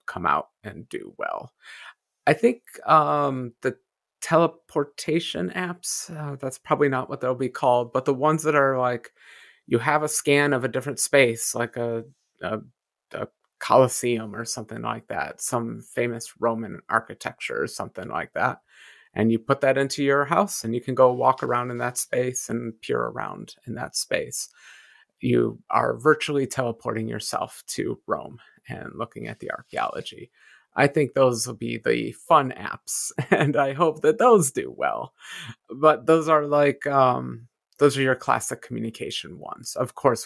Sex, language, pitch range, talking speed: male, English, 120-155 Hz, 165 wpm